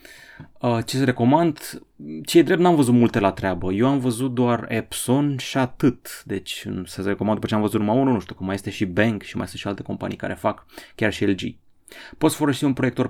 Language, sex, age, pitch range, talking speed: Romanian, male, 30-49, 100-130 Hz, 230 wpm